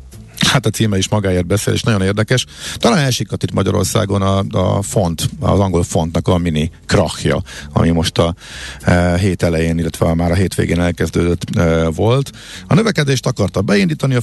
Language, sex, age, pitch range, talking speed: Hungarian, male, 50-69, 90-110 Hz, 175 wpm